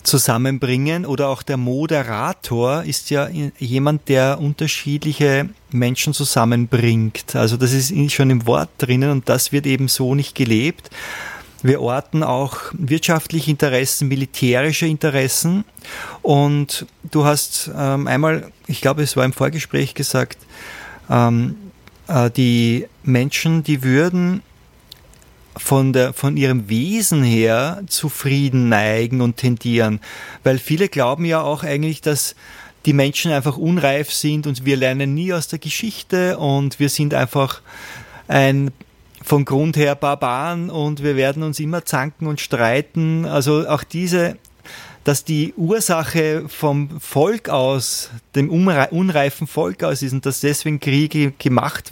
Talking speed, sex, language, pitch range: 130 wpm, male, German, 130-155 Hz